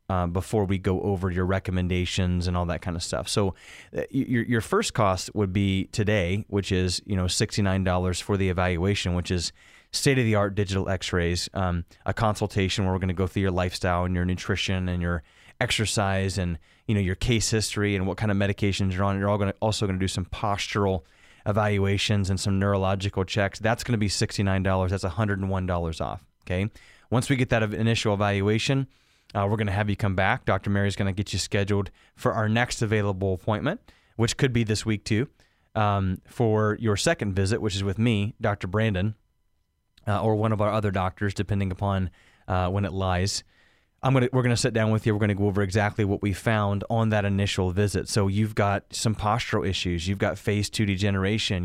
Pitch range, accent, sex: 95-110 Hz, American, male